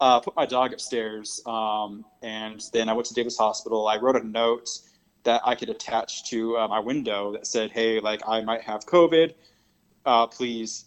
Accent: American